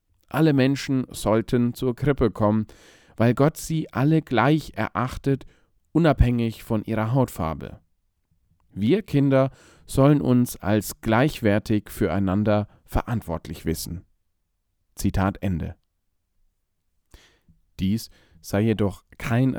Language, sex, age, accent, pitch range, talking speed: German, male, 40-59, German, 90-125 Hz, 95 wpm